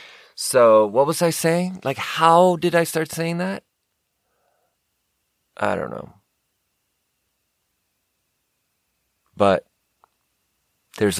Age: 30-49